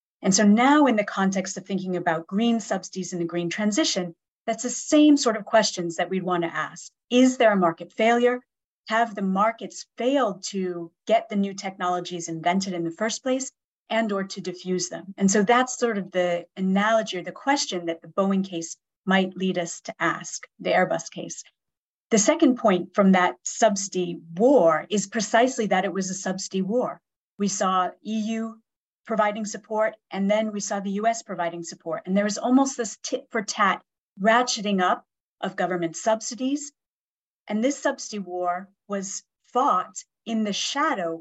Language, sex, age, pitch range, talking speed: English, female, 30-49, 180-230 Hz, 180 wpm